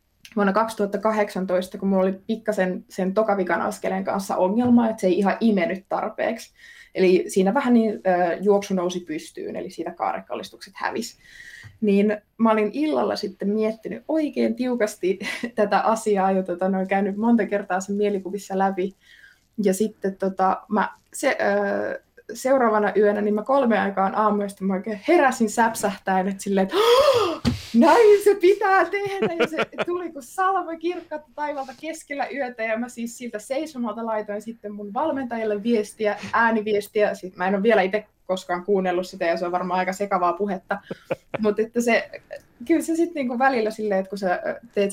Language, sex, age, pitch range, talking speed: Finnish, female, 20-39, 190-250 Hz, 160 wpm